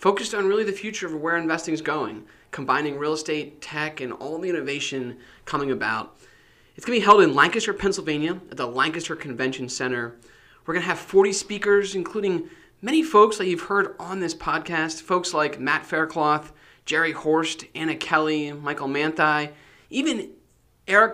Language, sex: English, male